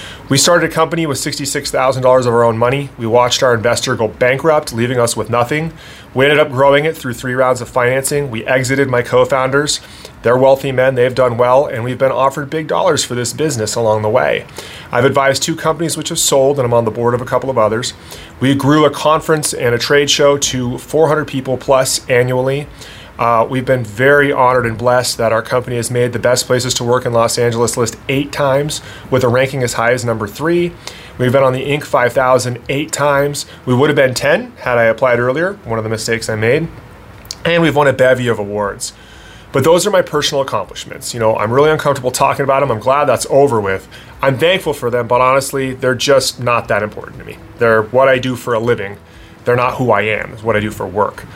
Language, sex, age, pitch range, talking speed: English, male, 30-49, 120-140 Hz, 225 wpm